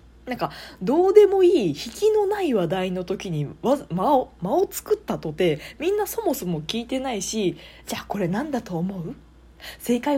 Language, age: Japanese, 20-39